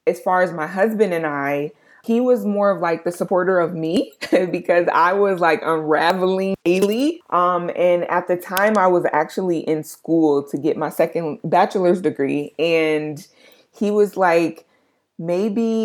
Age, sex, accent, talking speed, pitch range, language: 20-39, female, American, 165 wpm, 155-190 Hz, English